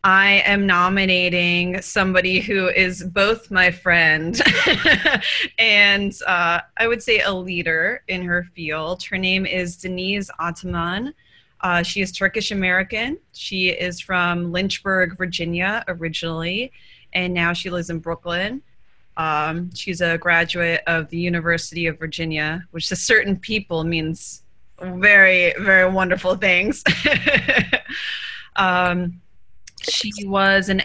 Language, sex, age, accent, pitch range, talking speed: English, female, 20-39, American, 165-195 Hz, 120 wpm